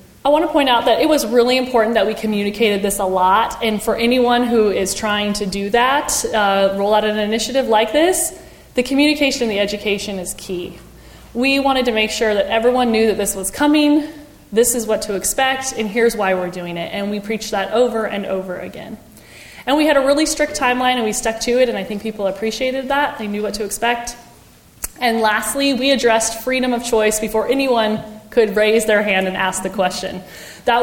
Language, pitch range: English, 195-240 Hz